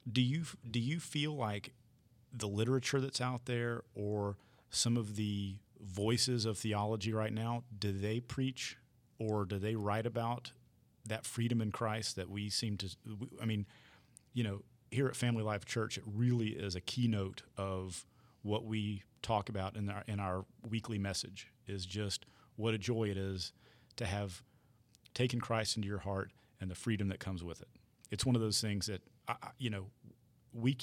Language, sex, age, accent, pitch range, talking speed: English, male, 40-59, American, 100-120 Hz, 175 wpm